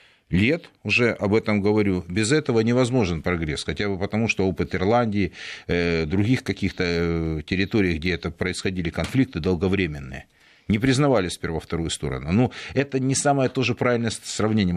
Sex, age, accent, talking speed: male, 50-69, native, 140 wpm